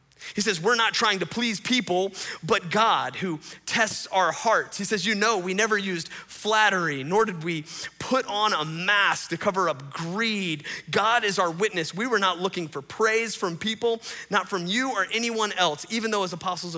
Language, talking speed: English, 195 wpm